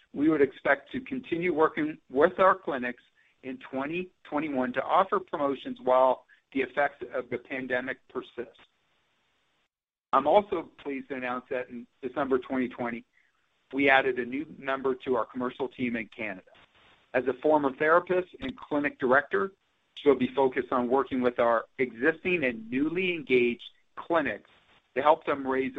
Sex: male